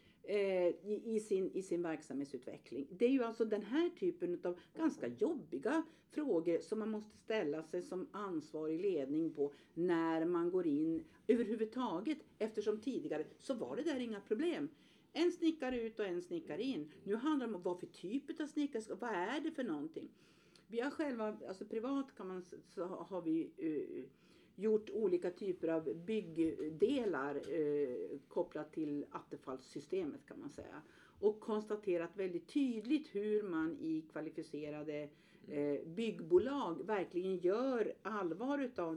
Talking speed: 150 wpm